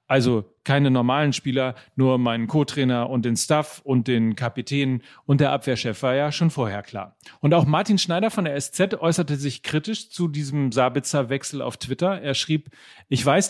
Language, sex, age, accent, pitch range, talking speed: German, male, 40-59, German, 130-165 Hz, 180 wpm